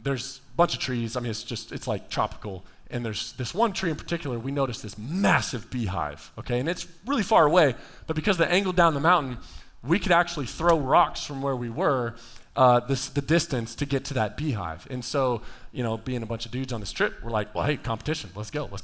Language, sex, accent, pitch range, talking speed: English, male, American, 125-170 Hz, 235 wpm